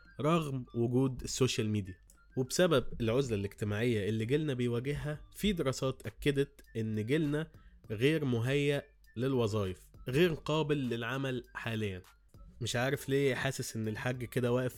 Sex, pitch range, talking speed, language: male, 110-140 Hz, 120 wpm, Arabic